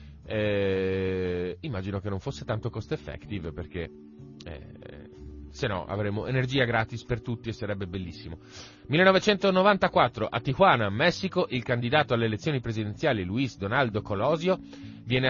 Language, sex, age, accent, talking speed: Italian, male, 30-49, native, 130 wpm